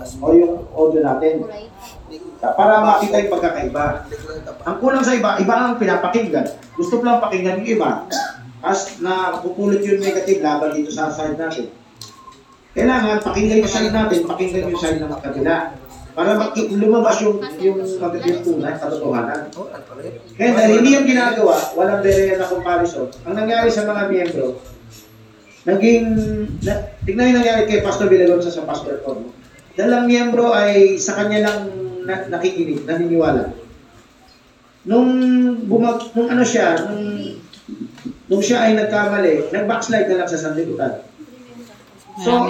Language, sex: Filipino, male